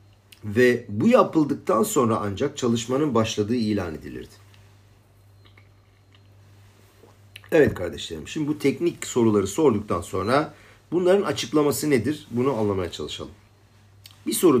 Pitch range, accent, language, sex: 100-130 Hz, native, Turkish, male